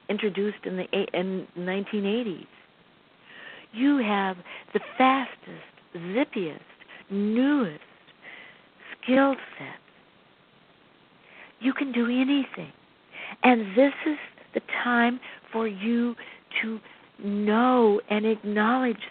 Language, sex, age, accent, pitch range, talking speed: English, female, 60-79, American, 195-245 Hz, 90 wpm